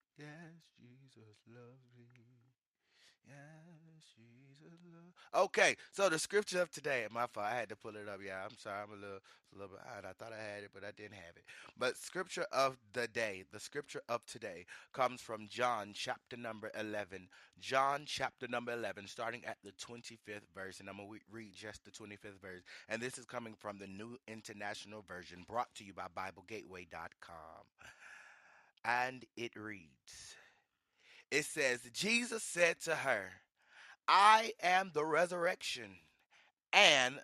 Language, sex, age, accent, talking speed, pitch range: English, male, 30-49, American, 165 wpm, 105-150 Hz